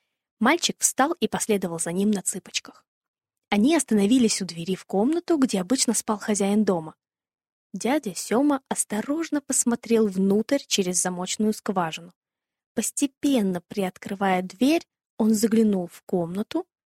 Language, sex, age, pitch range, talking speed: Russian, female, 20-39, 195-265 Hz, 120 wpm